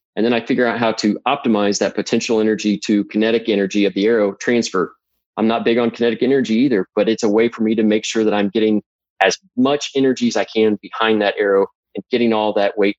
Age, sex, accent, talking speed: 20-39, male, American, 235 wpm